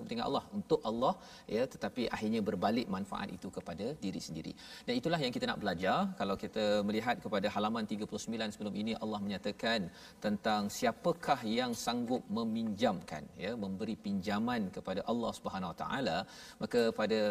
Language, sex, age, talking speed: Malayalam, male, 40-59, 150 wpm